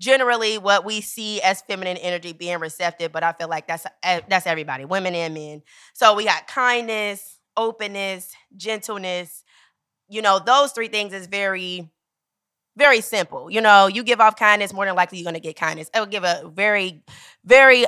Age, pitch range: 20-39, 180-250 Hz